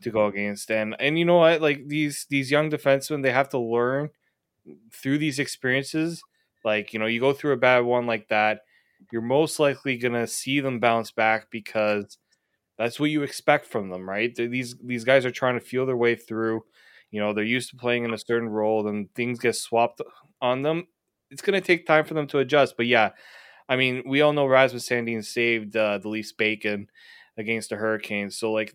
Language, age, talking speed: English, 20-39, 210 wpm